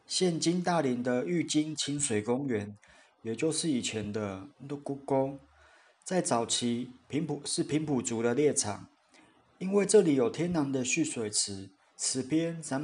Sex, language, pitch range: male, Chinese, 125-160 Hz